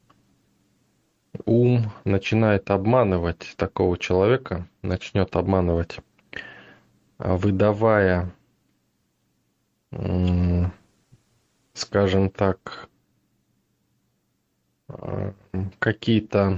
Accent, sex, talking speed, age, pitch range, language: native, male, 40 wpm, 20-39, 95-110 Hz, Russian